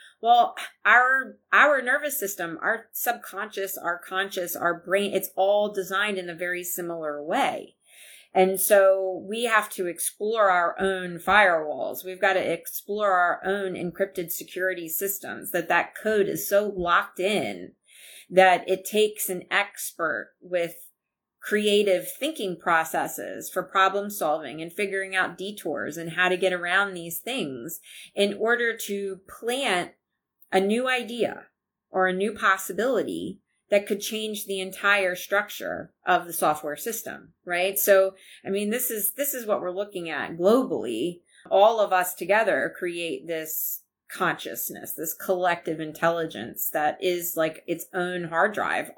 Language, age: English, 30-49